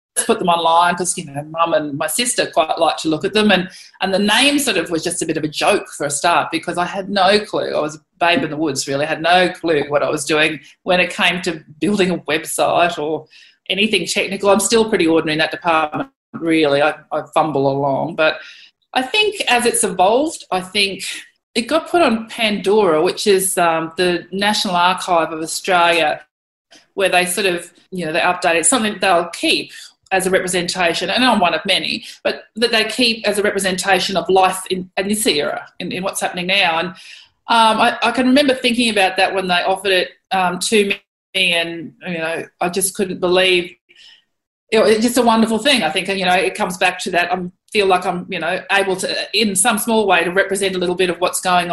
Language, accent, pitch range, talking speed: English, Australian, 175-225 Hz, 220 wpm